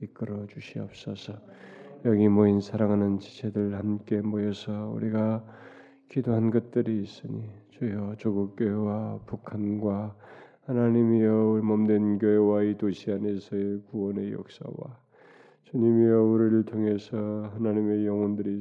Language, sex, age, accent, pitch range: Korean, male, 20-39, native, 105-115 Hz